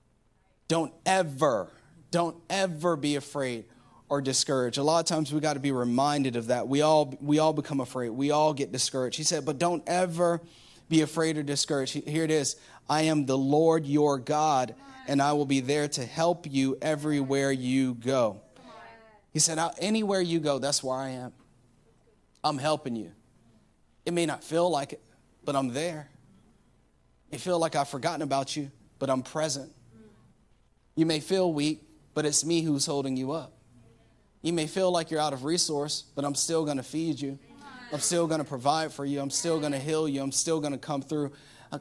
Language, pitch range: English, 140-160 Hz